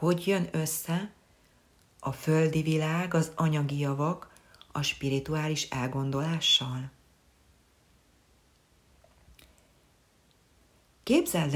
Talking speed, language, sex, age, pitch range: 65 wpm, Hungarian, female, 40-59, 130-165 Hz